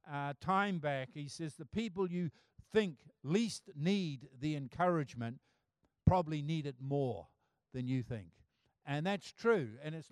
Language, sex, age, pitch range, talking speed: English, male, 50-69, 140-200 Hz, 150 wpm